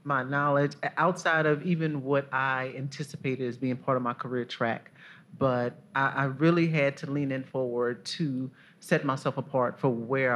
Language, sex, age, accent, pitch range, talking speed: English, male, 30-49, American, 125-155 Hz, 175 wpm